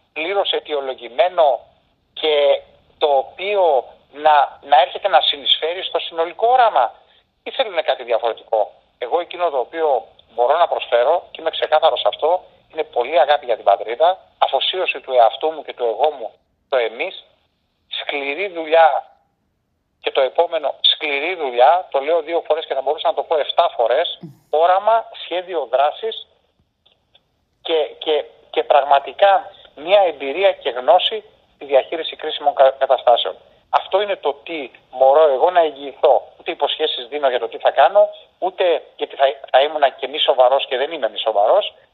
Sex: male